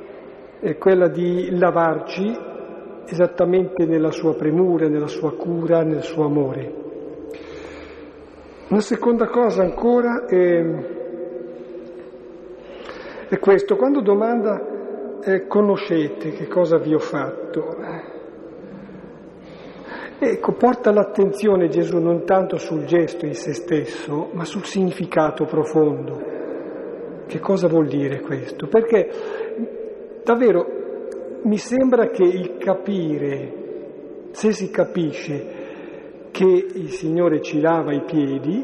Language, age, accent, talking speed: Italian, 50-69, native, 105 wpm